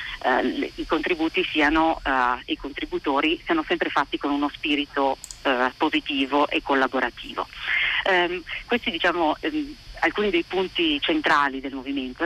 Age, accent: 40-59, native